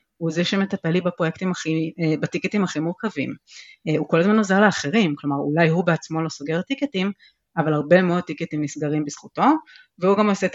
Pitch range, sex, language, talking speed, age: 150-195 Hz, female, Hebrew, 160 wpm, 30-49